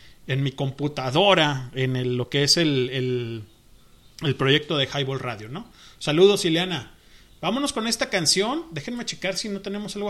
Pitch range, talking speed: 135-185 Hz, 165 wpm